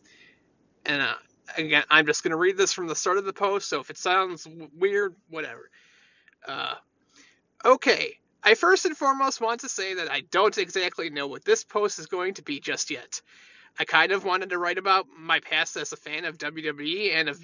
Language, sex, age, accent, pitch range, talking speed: English, male, 30-49, American, 170-245 Hz, 205 wpm